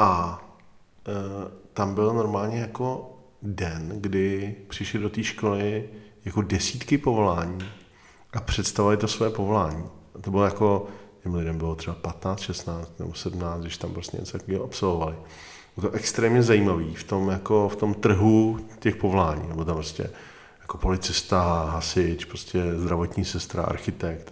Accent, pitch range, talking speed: native, 90-100 Hz, 150 wpm